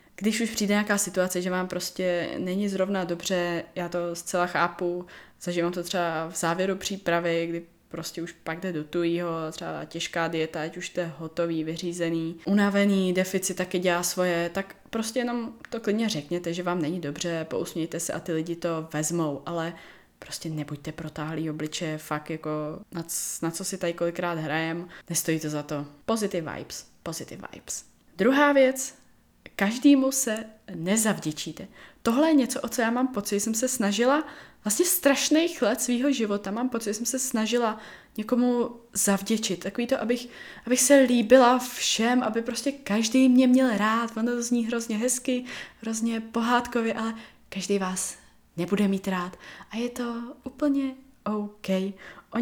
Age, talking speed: 20-39, 160 wpm